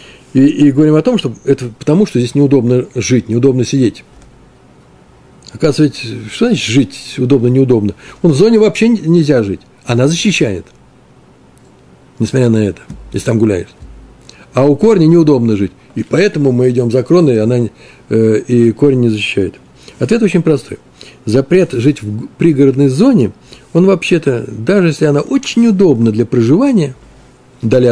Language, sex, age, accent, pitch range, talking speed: Russian, male, 60-79, native, 115-165 Hz, 140 wpm